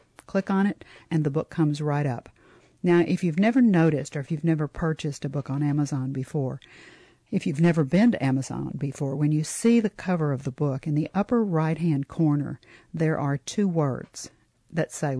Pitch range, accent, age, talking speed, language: 145-170 Hz, American, 50-69, 195 wpm, English